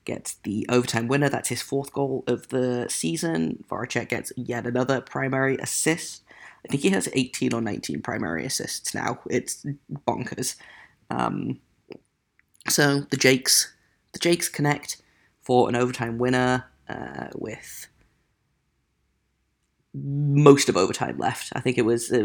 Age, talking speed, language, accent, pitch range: 20-39, 140 wpm, English, British, 115-145 Hz